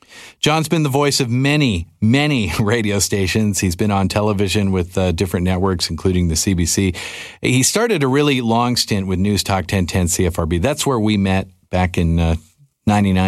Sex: male